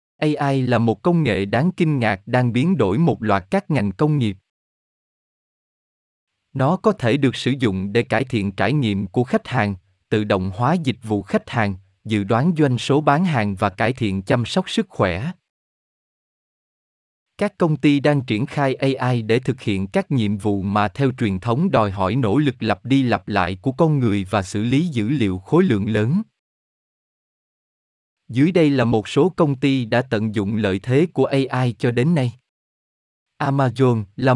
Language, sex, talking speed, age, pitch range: Vietnamese, male, 185 wpm, 20-39, 105-145 Hz